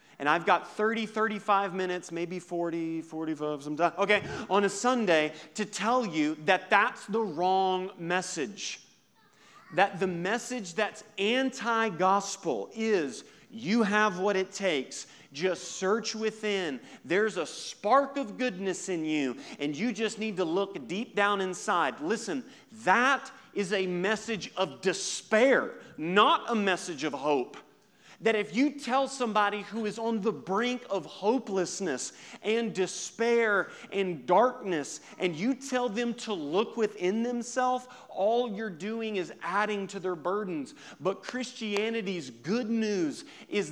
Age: 40-59